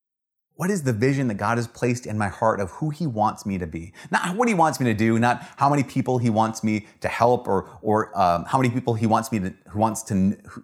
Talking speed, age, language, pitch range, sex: 260 wpm, 30-49, English, 100-135 Hz, male